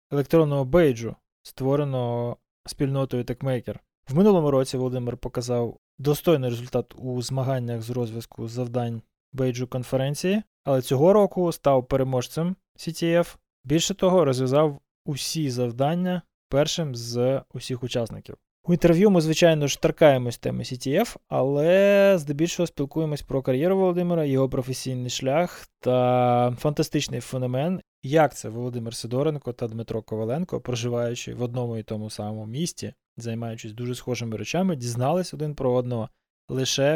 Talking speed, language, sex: 125 wpm, Ukrainian, male